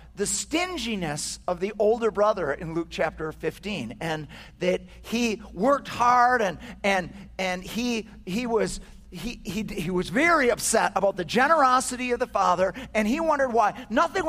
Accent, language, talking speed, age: American, English, 160 wpm, 50-69